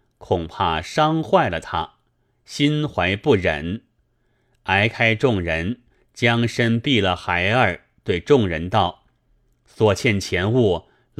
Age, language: 30-49, Chinese